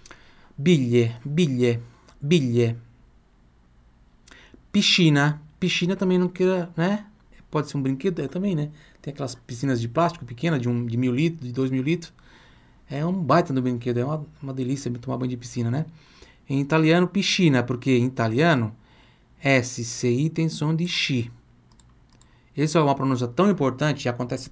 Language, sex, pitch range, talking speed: Italian, male, 120-160 Hz, 160 wpm